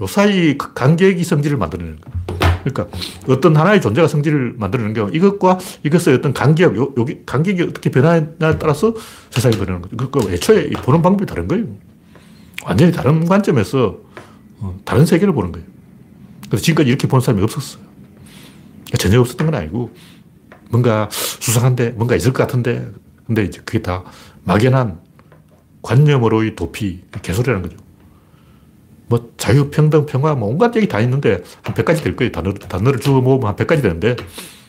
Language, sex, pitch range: Korean, male, 105-155 Hz